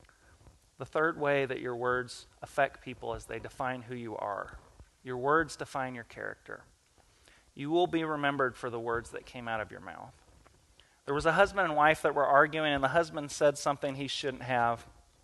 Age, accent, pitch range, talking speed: 30-49, American, 125-155 Hz, 195 wpm